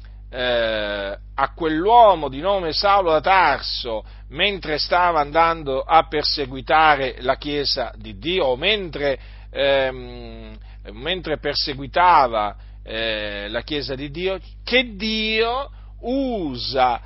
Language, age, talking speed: Italian, 40-59, 100 wpm